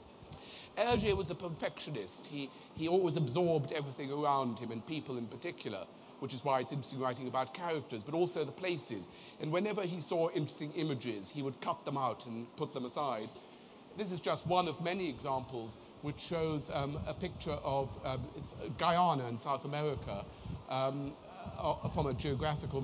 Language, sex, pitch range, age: German, male, 130-155 Hz, 40-59